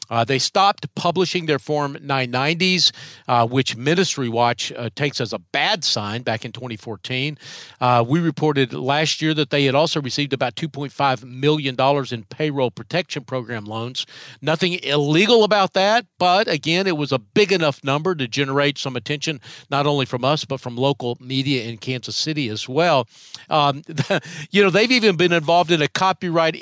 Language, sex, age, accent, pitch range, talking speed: English, male, 50-69, American, 125-160 Hz, 180 wpm